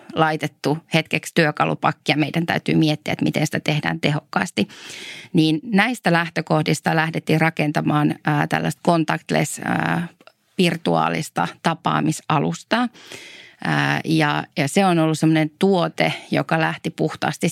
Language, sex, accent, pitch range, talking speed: Finnish, female, native, 155-170 Hz, 95 wpm